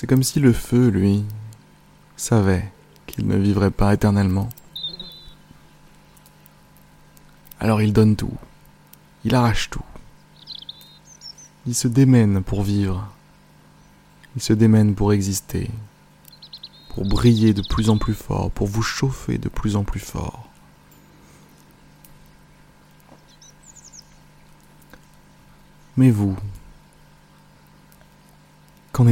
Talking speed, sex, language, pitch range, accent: 95 wpm, male, French, 100-120 Hz, French